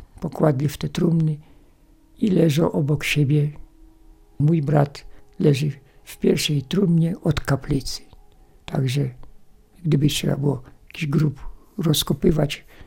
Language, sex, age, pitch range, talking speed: Polish, male, 60-79, 140-170 Hz, 105 wpm